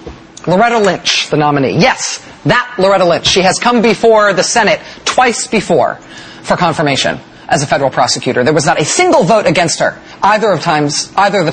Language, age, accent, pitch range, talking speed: English, 30-49, American, 165-270 Hz, 185 wpm